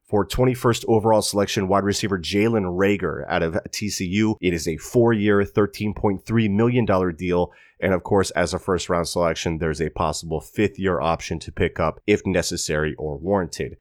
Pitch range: 90-110 Hz